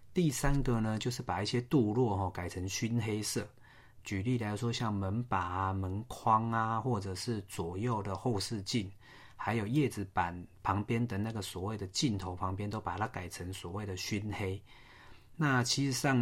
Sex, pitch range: male, 95-120 Hz